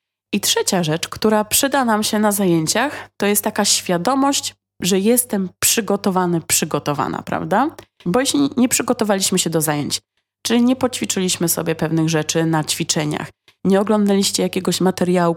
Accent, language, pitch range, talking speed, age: native, Polish, 170-225 Hz, 145 wpm, 20-39